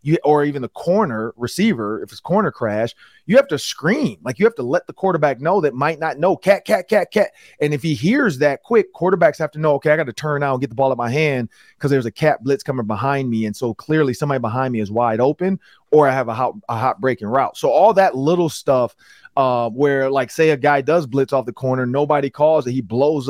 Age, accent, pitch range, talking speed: 30-49, American, 130-185 Hz, 260 wpm